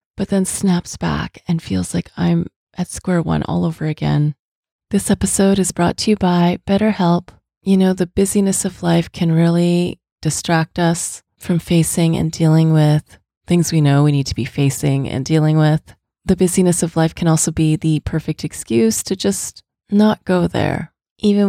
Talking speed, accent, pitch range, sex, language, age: 180 wpm, American, 155-185 Hz, female, English, 30-49